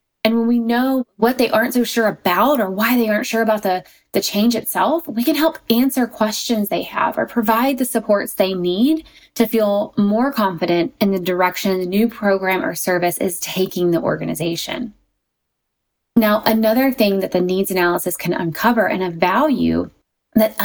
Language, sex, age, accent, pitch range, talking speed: English, female, 20-39, American, 190-250 Hz, 180 wpm